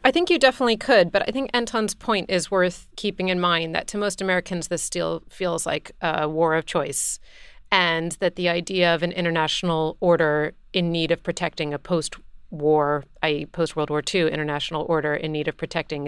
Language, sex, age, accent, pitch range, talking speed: English, female, 30-49, American, 155-185 Hz, 190 wpm